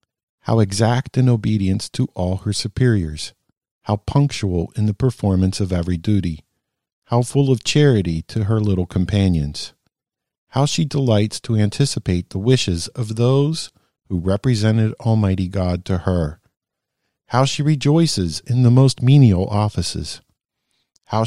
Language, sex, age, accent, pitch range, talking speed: English, male, 50-69, American, 95-120 Hz, 135 wpm